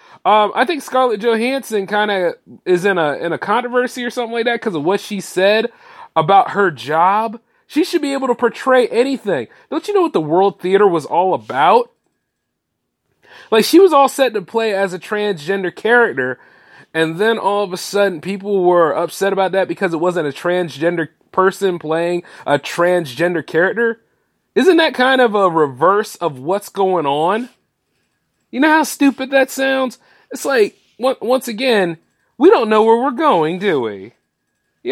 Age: 30-49